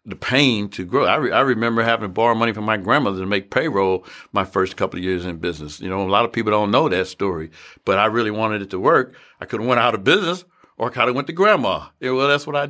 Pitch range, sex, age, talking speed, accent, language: 95-125 Hz, male, 60-79, 280 wpm, American, English